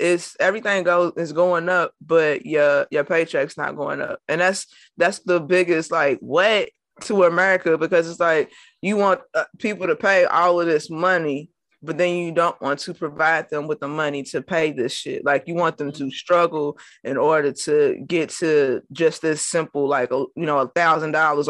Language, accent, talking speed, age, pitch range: English, American, 195 wpm, 20-39, 155-190 Hz